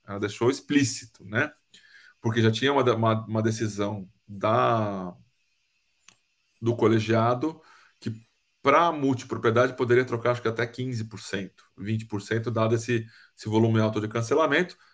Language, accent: Portuguese, Brazilian